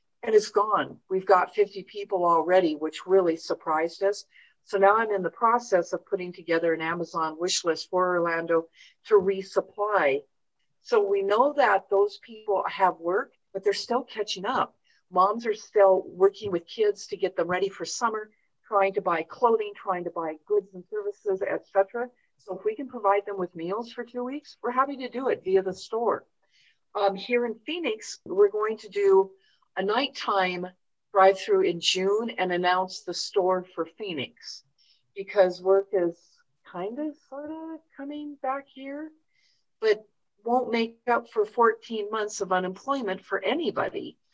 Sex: female